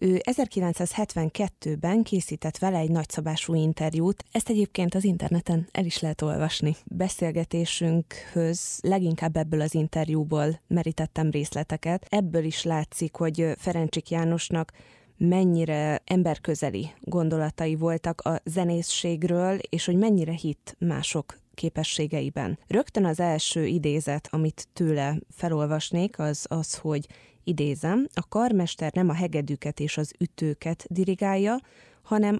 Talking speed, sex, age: 115 wpm, female, 20-39